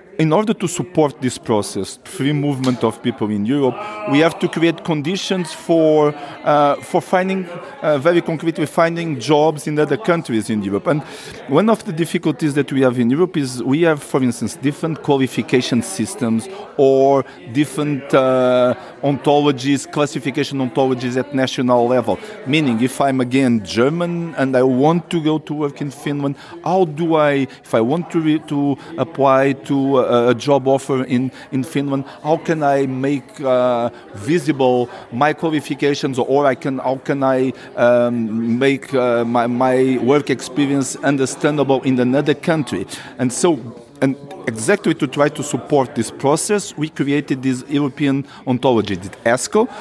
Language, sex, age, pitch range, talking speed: English, male, 50-69, 130-155 Hz, 160 wpm